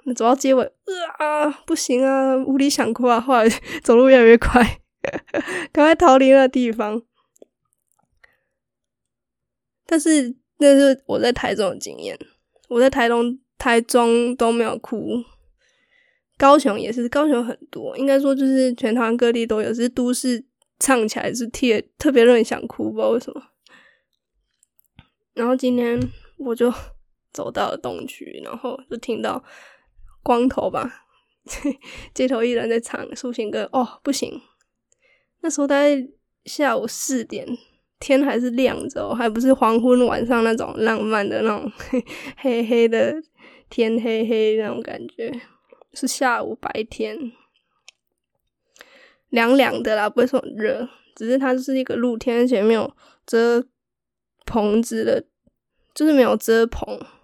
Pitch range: 235-270 Hz